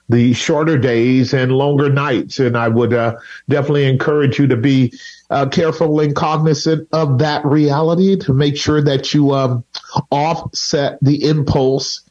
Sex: male